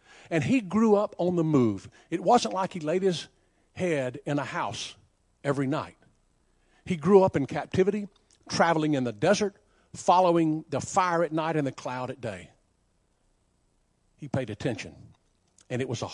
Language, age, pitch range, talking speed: English, 50-69, 125-180 Hz, 165 wpm